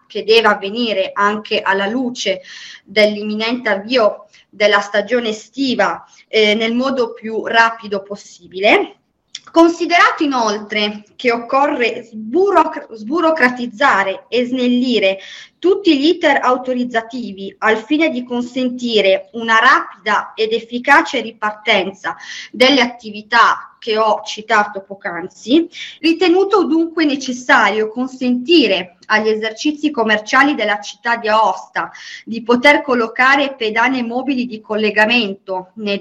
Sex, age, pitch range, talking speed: female, 20-39, 210-270 Hz, 105 wpm